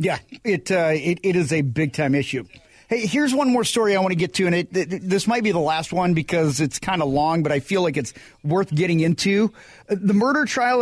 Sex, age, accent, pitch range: male, 40-59, American, 170-205 Hz